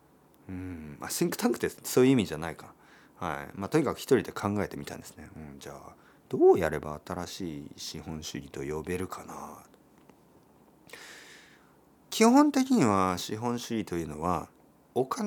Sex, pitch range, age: male, 85-130 Hz, 40-59